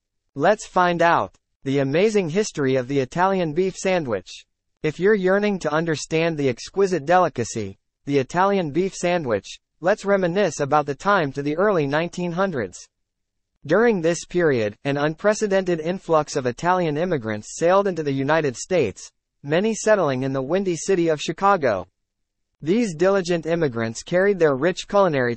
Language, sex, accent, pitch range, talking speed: English, male, American, 130-185 Hz, 145 wpm